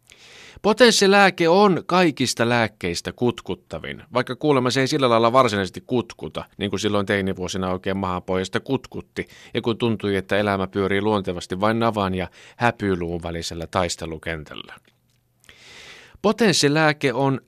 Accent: native